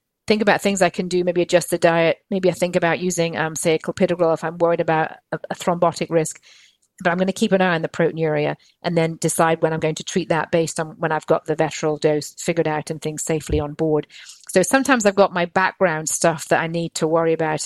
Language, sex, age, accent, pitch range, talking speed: English, female, 40-59, British, 160-190 Hz, 250 wpm